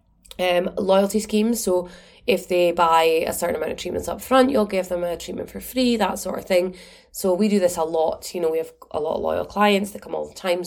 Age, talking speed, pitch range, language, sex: 20-39, 255 wpm, 175-225 Hz, English, female